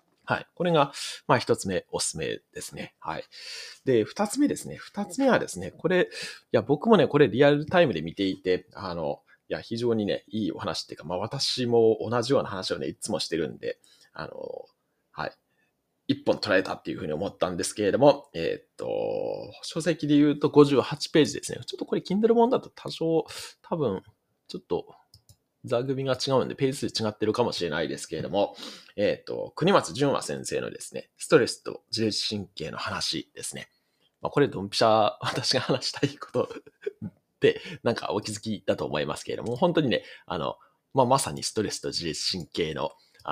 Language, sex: Japanese, male